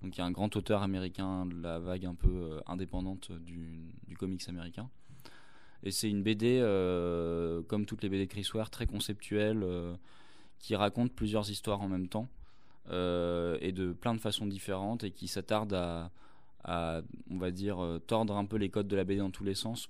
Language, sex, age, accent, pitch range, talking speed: French, male, 20-39, French, 90-105 Hz, 200 wpm